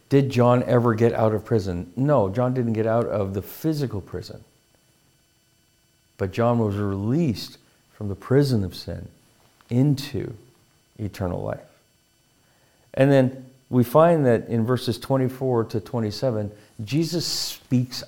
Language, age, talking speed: English, 50-69, 135 wpm